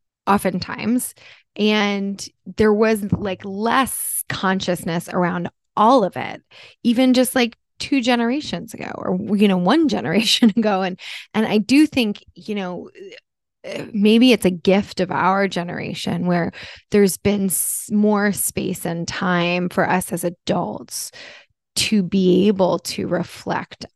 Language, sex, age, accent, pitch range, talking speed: English, female, 20-39, American, 185-225 Hz, 135 wpm